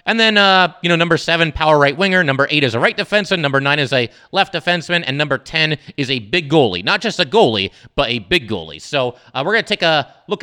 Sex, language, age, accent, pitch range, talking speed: male, English, 30-49, American, 140-200 Hz, 260 wpm